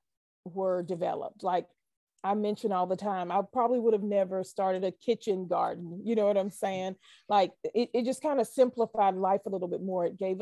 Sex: female